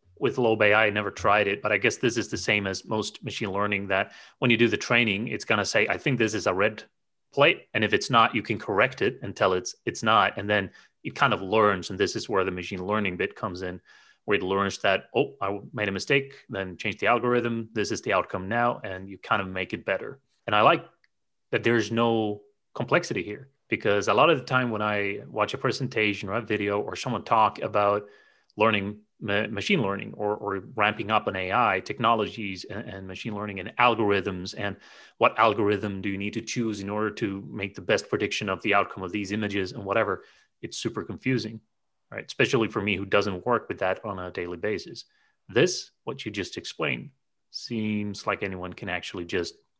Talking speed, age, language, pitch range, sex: 220 wpm, 30-49, English, 100-115 Hz, male